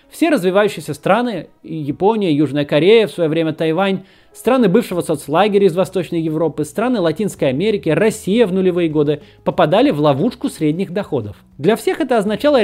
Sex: male